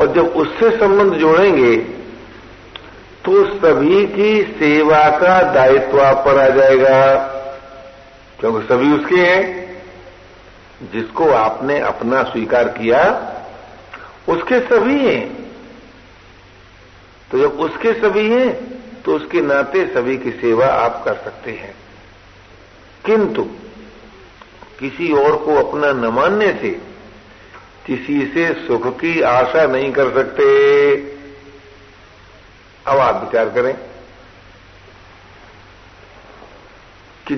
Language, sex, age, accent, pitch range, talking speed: Hindi, male, 60-79, native, 105-170 Hz, 100 wpm